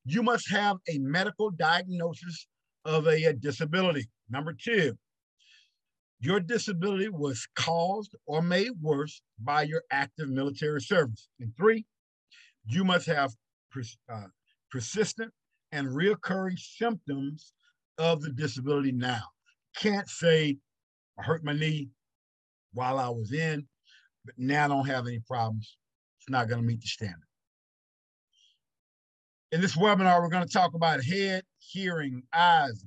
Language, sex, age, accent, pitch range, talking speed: English, male, 50-69, American, 125-175 Hz, 135 wpm